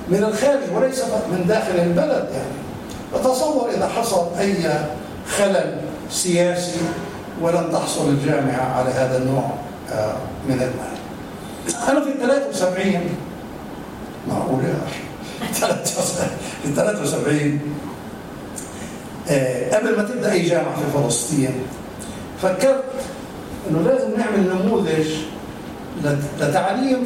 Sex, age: male, 60-79